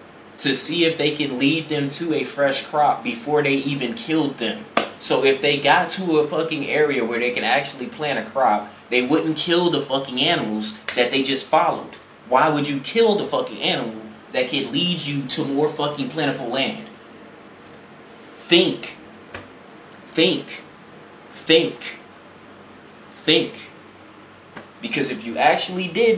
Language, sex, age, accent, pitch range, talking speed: English, male, 20-39, American, 135-185 Hz, 150 wpm